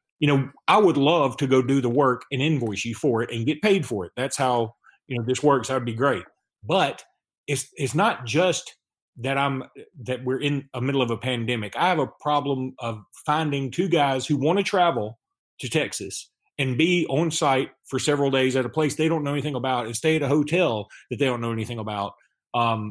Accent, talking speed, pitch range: American, 225 wpm, 130-170 Hz